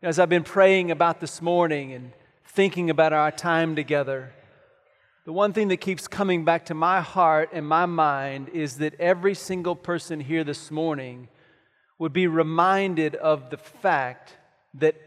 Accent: American